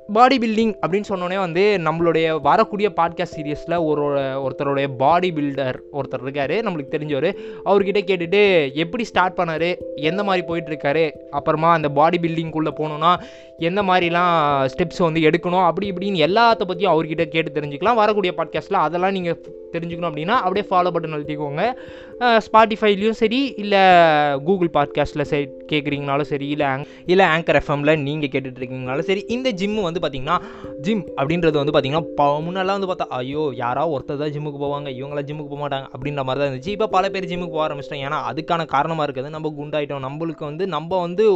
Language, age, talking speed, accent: Tamil, 20-39, 160 wpm, native